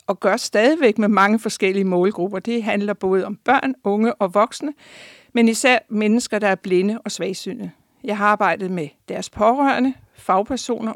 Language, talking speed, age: Danish, 165 wpm, 60-79